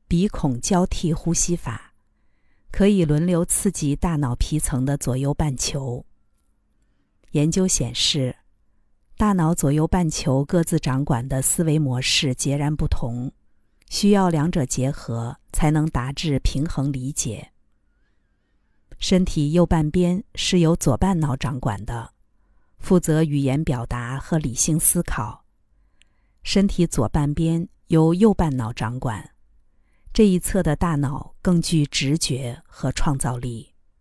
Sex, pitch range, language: female, 130-170 Hz, Chinese